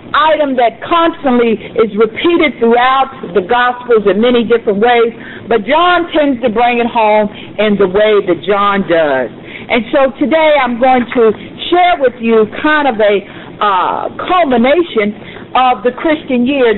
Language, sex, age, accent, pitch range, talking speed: English, female, 50-69, American, 225-295 Hz, 155 wpm